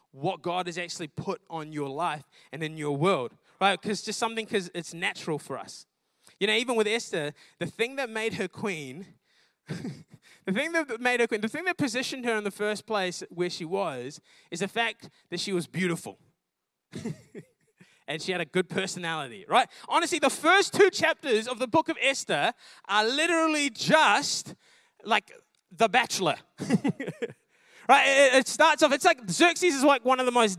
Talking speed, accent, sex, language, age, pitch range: 180 wpm, Australian, male, English, 20-39, 190-275 Hz